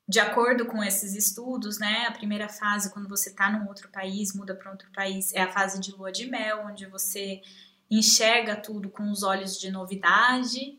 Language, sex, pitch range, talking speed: Portuguese, female, 195-220 Hz, 195 wpm